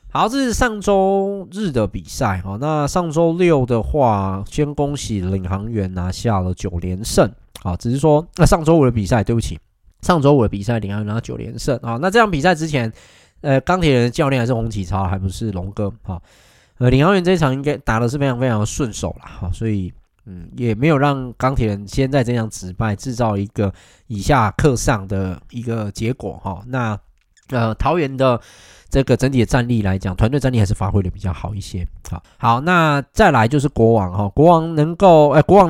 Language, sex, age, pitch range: Chinese, male, 20-39, 100-140 Hz